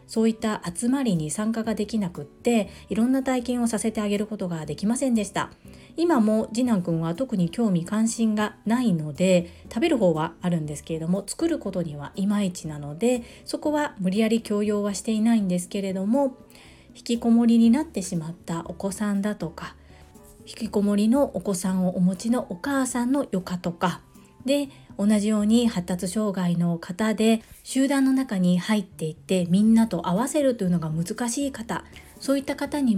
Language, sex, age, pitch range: Japanese, female, 40-59, 185-235 Hz